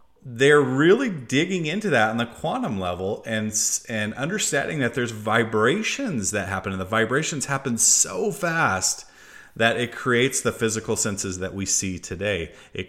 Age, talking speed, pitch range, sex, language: 30-49, 160 wpm, 95-120 Hz, male, English